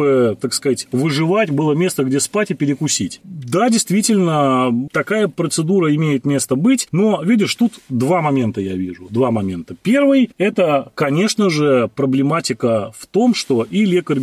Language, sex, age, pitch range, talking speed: Russian, male, 30-49, 130-190 Hz, 150 wpm